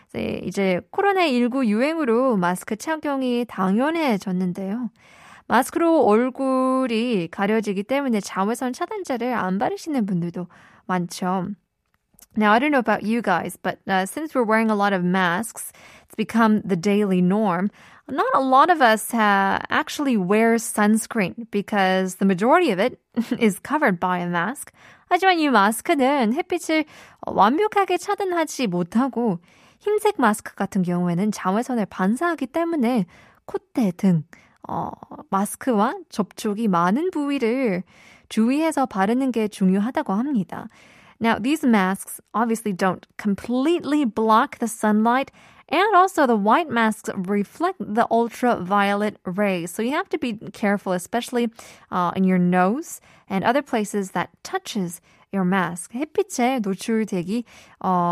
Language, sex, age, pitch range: Korean, female, 20-39, 195-265 Hz